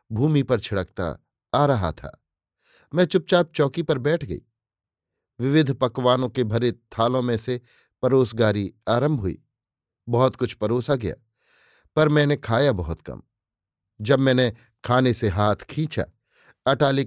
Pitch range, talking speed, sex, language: 110-135 Hz, 135 wpm, male, Hindi